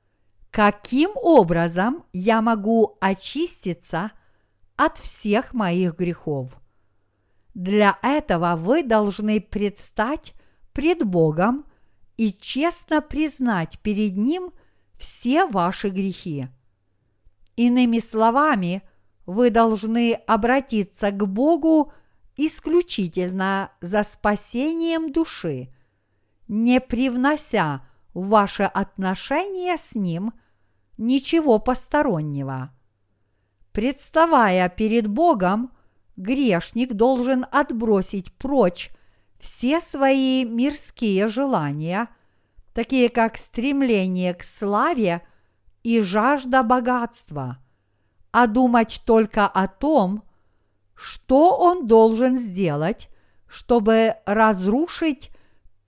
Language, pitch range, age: Russian, 180-260 Hz, 50-69